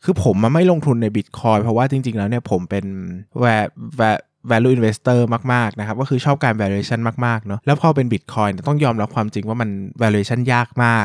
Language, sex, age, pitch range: Thai, male, 20-39, 105-130 Hz